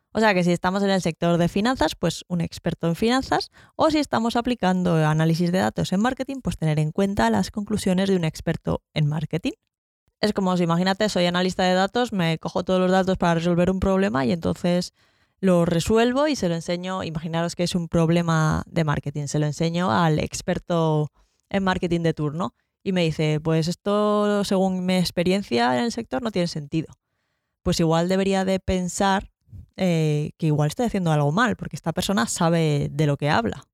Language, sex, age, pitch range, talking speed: Spanish, female, 10-29, 165-215 Hz, 195 wpm